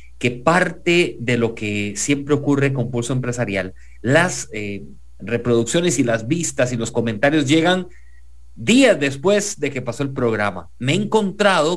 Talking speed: 155 wpm